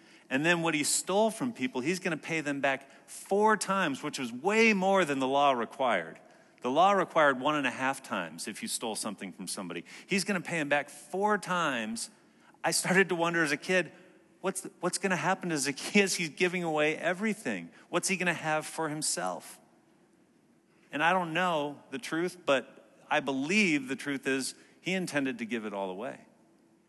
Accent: American